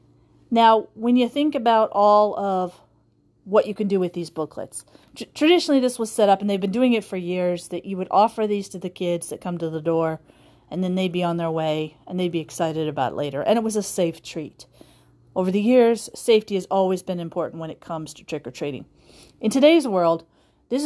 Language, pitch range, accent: English, 175-215 Hz, American